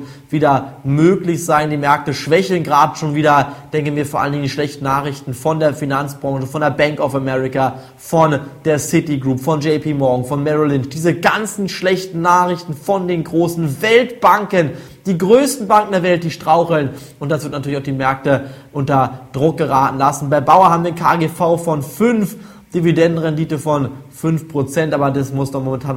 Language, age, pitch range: German, 20-39, 130-160 Hz